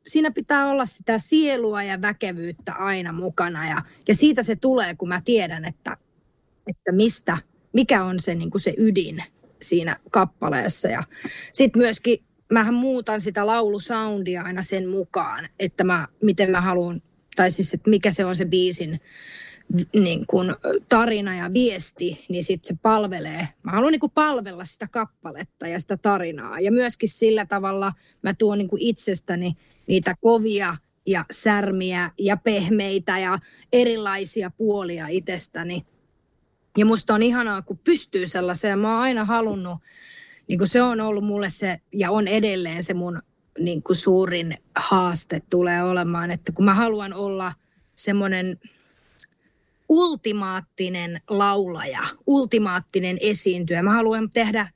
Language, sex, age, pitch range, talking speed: Finnish, female, 30-49, 180-225 Hz, 140 wpm